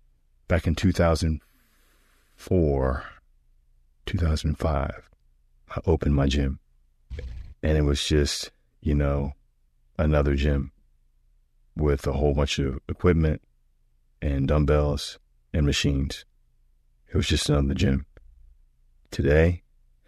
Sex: male